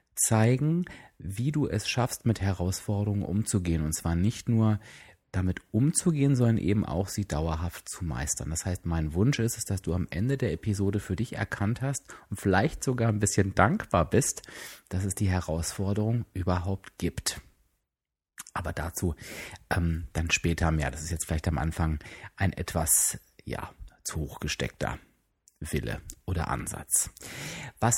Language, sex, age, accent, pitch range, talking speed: German, male, 30-49, German, 85-110 Hz, 155 wpm